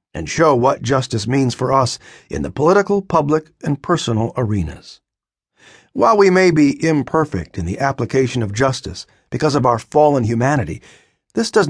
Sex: male